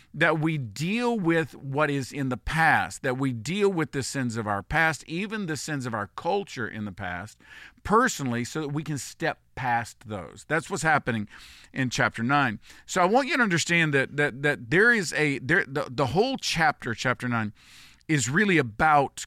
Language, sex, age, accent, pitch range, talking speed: English, male, 50-69, American, 125-175 Hz, 195 wpm